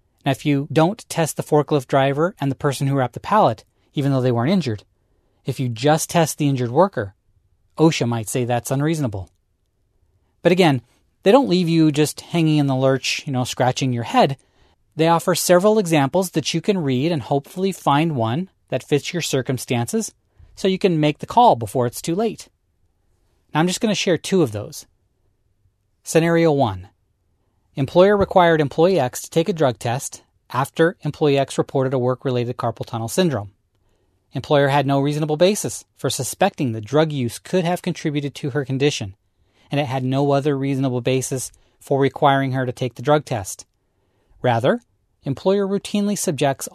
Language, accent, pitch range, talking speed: English, American, 115-160 Hz, 175 wpm